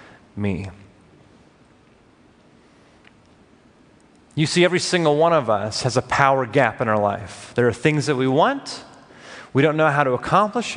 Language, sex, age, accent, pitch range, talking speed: English, male, 30-49, American, 135-205 Hz, 150 wpm